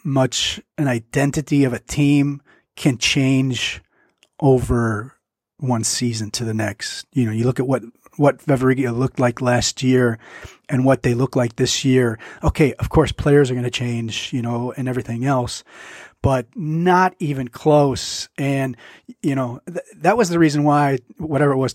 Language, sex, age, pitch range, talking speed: English, male, 30-49, 120-140 Hz, 170 wpm